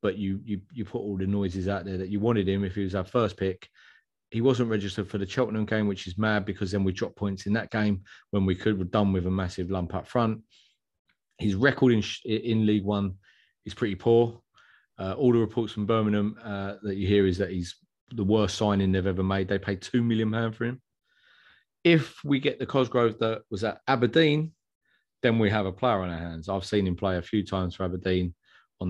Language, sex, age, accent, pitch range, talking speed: English, male, 30-49, British, 95-115 Hz, 230 wpm